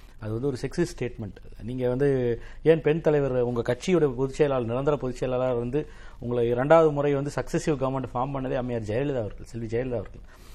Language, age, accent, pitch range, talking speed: Tamil, 30-49, native, 120-155 Hz, 160 wpm